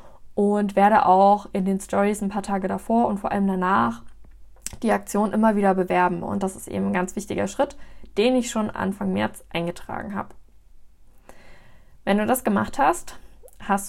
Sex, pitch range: female, 195-230 Hz